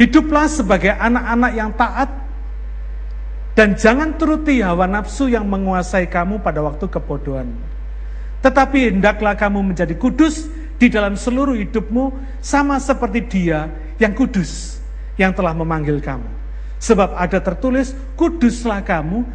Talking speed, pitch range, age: 120 wpm, 140-230 Hz, 50-69